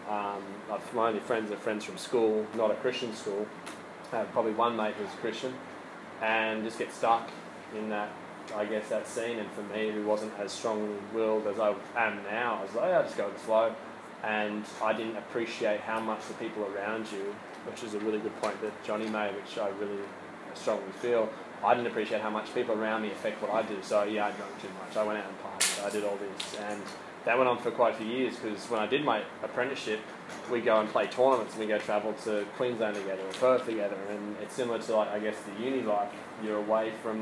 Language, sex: English, male